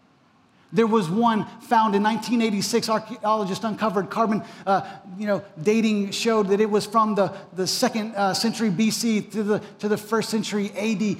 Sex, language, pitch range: male, English, 195-230 Hz